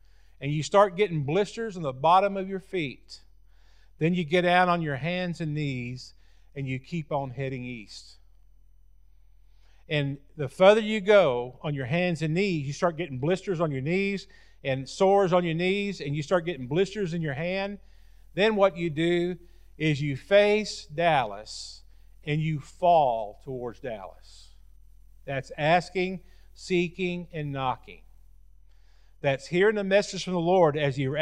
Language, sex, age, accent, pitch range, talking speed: English, male, 50-69, American, 115-180 Hz, 160 wpm